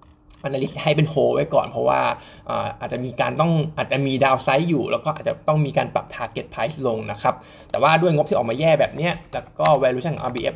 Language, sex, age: Thai, male, 20-39